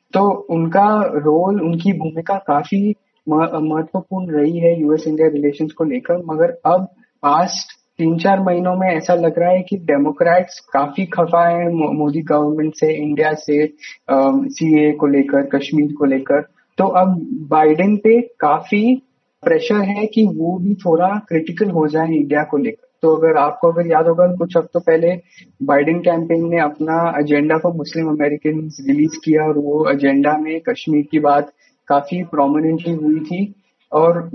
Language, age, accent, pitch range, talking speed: Hindi, 20-39, native, 150-190 Hz, 155 wpm